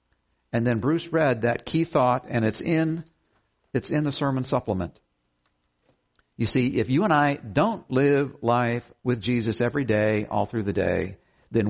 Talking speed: 170 wpm